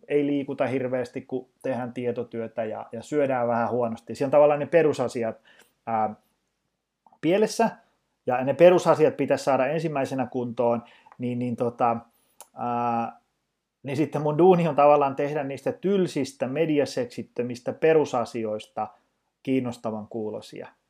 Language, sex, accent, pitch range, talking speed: Finnish, male, native, 115-150 Hz, 120 wpm